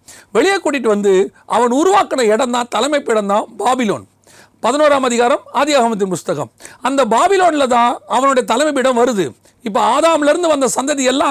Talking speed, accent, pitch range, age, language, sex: 135 wpm, native, 220-300 Hz, 40-59, Tamil, male